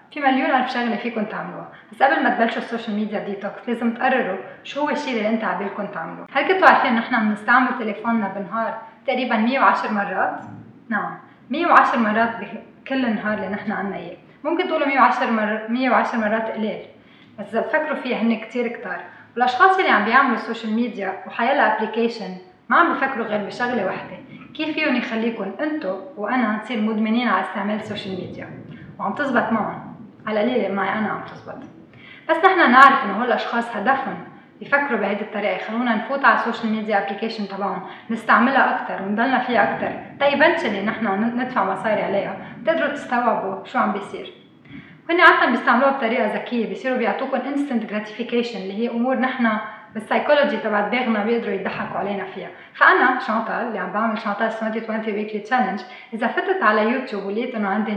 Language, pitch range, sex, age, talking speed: Arabic, 210-255 Hz, female, 20-39, 165 wpm